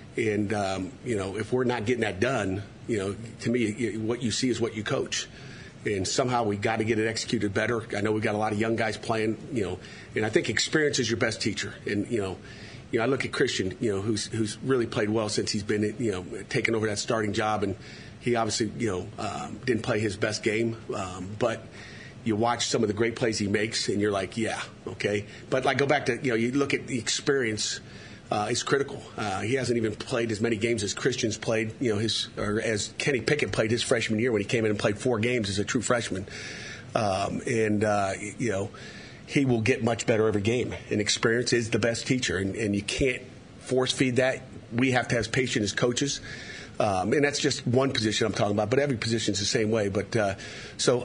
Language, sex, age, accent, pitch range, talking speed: English, male, 40-59, American, 105-125 Hz, 240 wpm